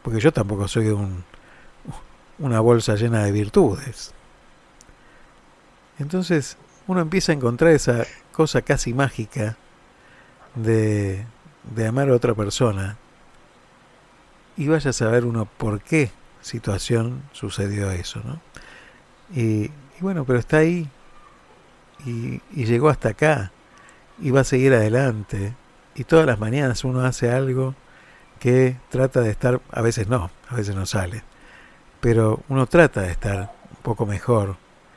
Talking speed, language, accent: 135 wpm, Spanish, Argentinian